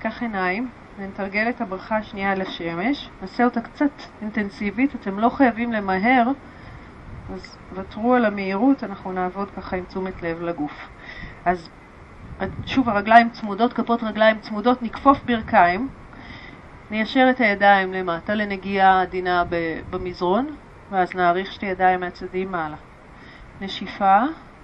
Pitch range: 185-235 Hz